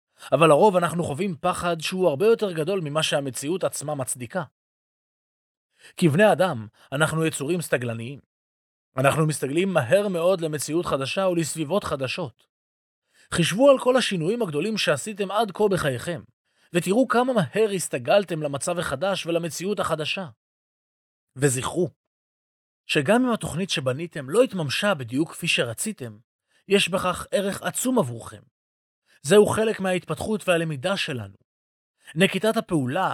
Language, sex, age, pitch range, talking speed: Hebrew, male, 30-49, 140-195 Hz, 120 wpm